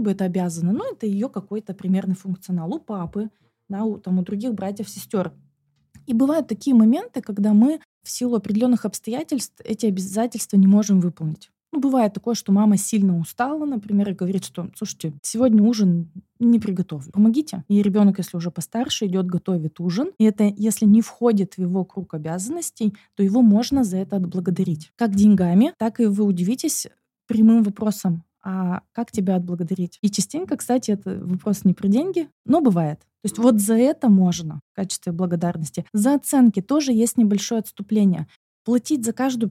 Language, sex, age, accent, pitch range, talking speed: Russian, female, 20-39, native, 185-235 Hz, 170 wpm